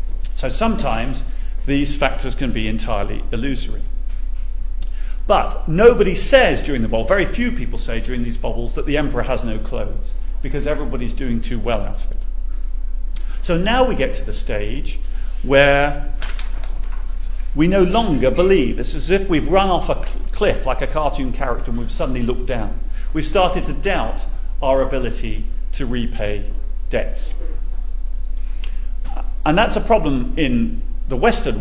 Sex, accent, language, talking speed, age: male, British, English, 150 wpm, 40-59